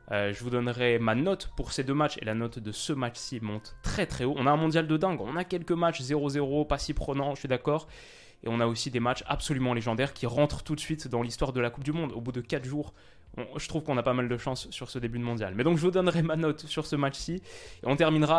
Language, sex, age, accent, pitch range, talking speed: French, male, 20-39, French, 120-150 Hz, 285 wpm